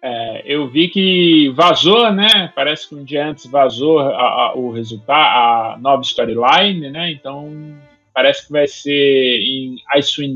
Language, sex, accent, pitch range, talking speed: Portuguese, male, Brazilian, 130-180 Hz, 140 wpm